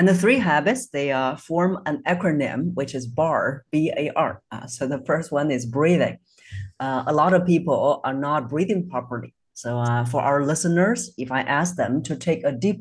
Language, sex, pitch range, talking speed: English, female, 135-175 Hz, 190 wpm